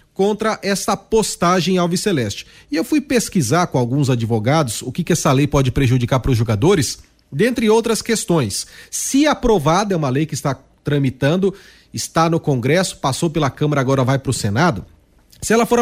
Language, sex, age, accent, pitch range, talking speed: Portuguese, male, 40-59, Brazilian, 155-230 Hz, 180 wpm